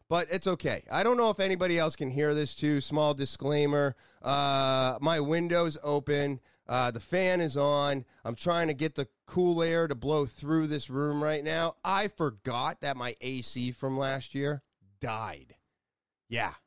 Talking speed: 175 wpm